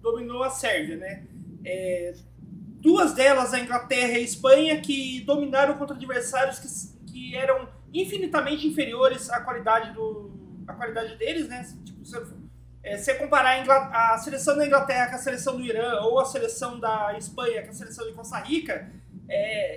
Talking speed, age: 165 wpm, 20-39